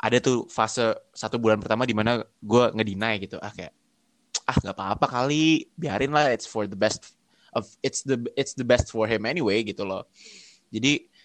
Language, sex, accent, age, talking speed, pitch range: Indonesian, male, native, 20-39, 175 wpm, 115-155 Hz